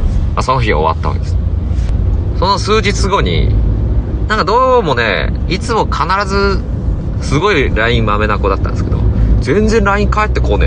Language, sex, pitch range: Japanese, male, 80-105 Hz